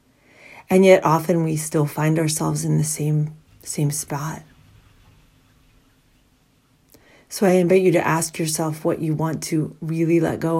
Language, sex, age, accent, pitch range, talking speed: English, female, 40-59, American, 130-160 Hz, 145 wpm